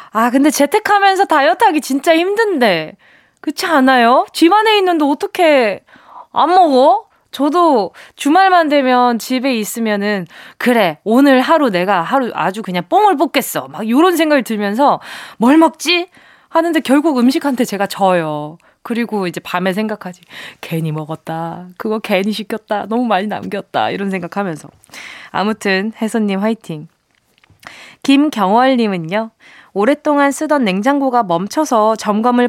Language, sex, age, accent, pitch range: Korean, female, 20-39, native, 200-300 Hz